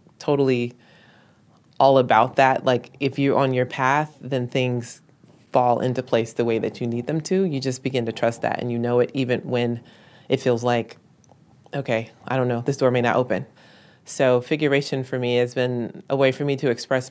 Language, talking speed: English, 205 wpm